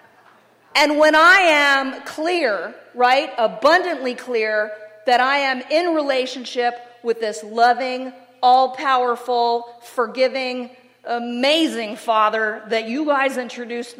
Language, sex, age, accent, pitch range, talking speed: English, female, 40-59, American, 220-270 Hz, 105 wpm